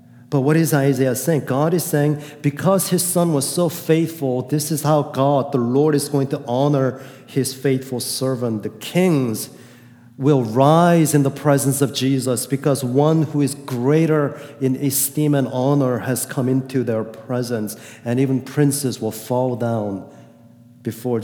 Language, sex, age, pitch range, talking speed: English, male, 40-59, 115-135 Hz, 160 wpm